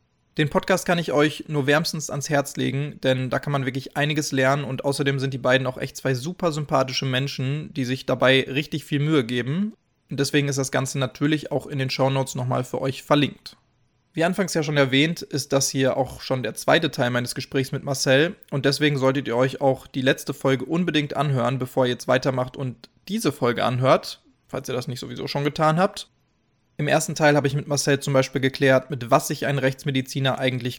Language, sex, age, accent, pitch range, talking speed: German, male, 20-39, German, 130-150 Hz, 210 wpm